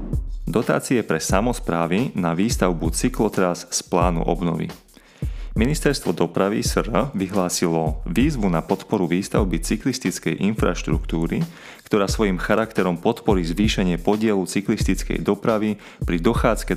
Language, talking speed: Slovak, 105 wpm